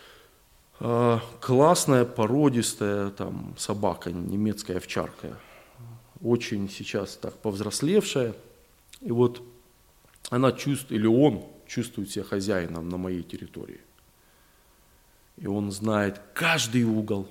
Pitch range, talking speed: 105-125 Hz, 95 wpm